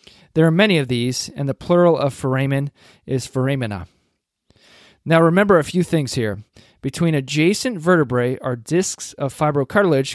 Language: English